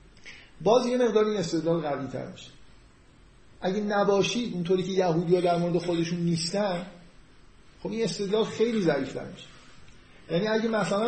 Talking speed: 135 wpm